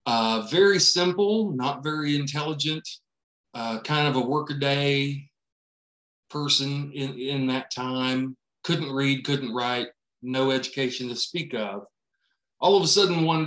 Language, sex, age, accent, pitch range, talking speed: English, male, 40-59, American, 130-160 Hz, 140 wpm